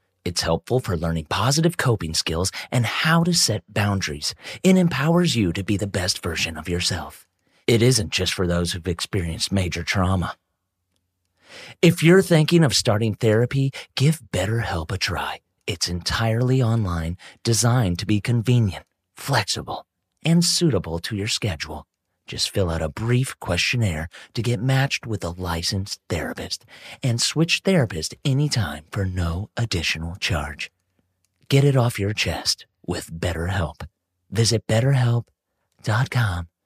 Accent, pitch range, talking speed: American, 85-120 Hz, 140 wpm